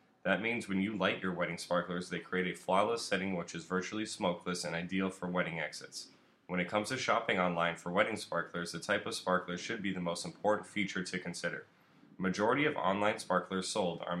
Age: 10-29